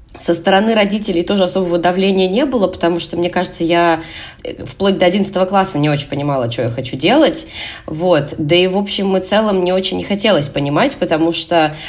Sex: female